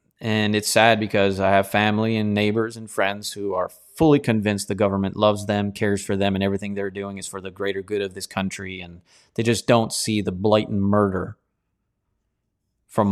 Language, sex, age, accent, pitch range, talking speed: English, male, 30-49, American, 100-125 Hz, 195 wpm